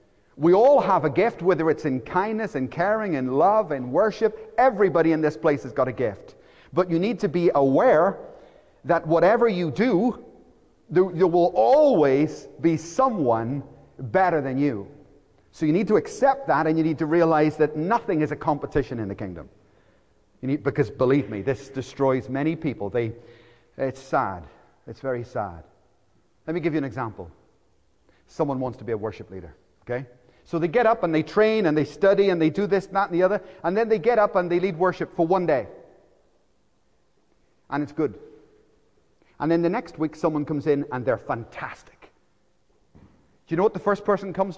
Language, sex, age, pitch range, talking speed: English, male, 40-59, 140-225 Hz, 190 wpm